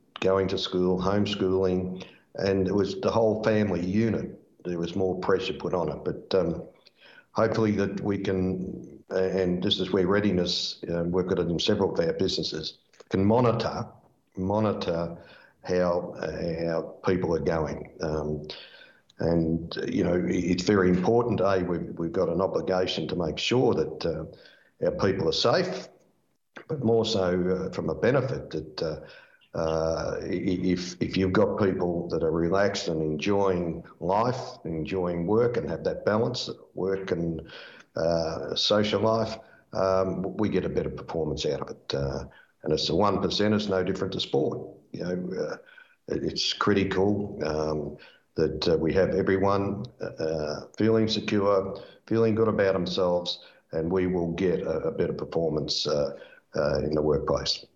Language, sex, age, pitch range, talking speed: English, male, 60-79, 90-105 Hz, 160 wpm